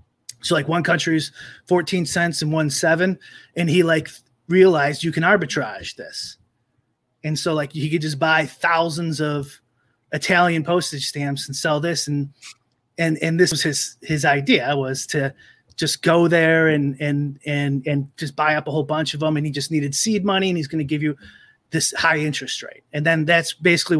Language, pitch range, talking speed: English, 140-165 Hz, 195 wpm